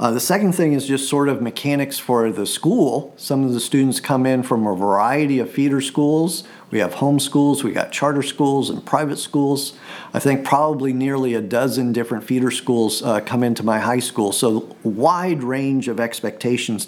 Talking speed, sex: 195 wpm, male